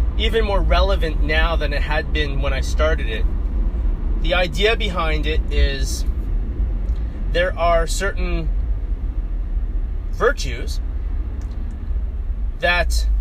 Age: 30-49